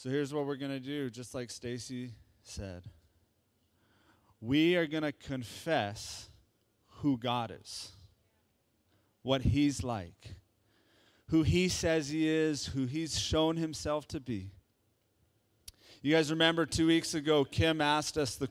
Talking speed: 140 wpm